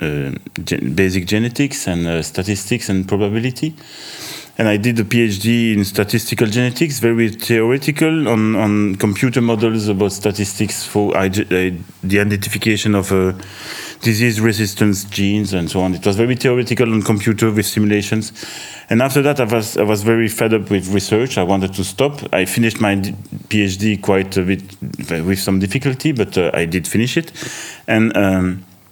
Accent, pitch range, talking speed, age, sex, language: French, 100-115 Hz, 165 wpm, 30-49, male, English